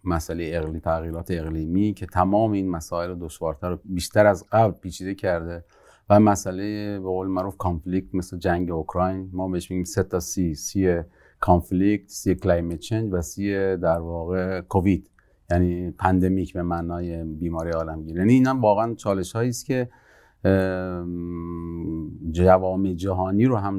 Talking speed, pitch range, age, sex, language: 140 wpm, 85-100 Hz, 40-59, male, Persian